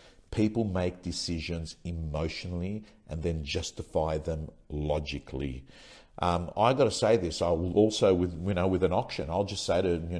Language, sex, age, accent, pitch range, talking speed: English, male, 50-69, Australian, 85-105 Hz, 170 wpm